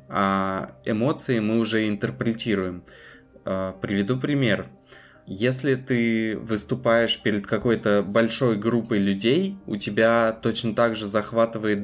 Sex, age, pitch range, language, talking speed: male, 20-39, 100-115 Hz, Russian, 105 wpm